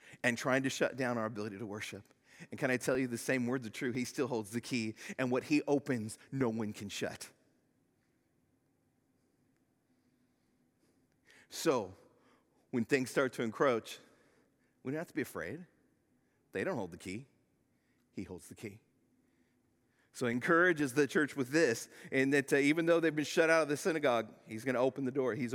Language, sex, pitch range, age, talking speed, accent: English, male, 130-180 Hz, 40-59, 185 wpm, American